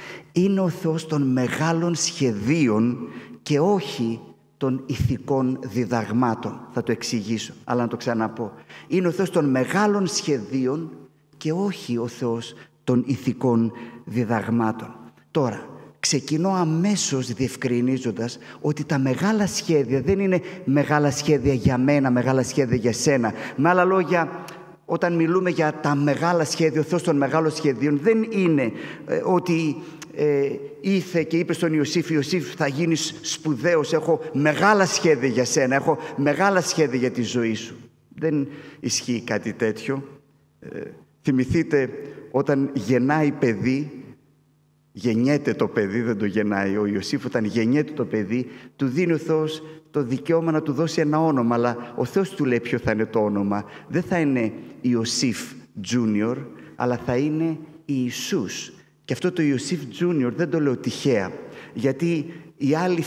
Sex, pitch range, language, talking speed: male, 125-165 Hz, Greek, 145 wpm